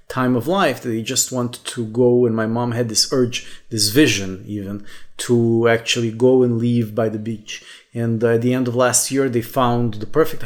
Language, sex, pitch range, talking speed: English, male, 115-150 Hz, 205 wpm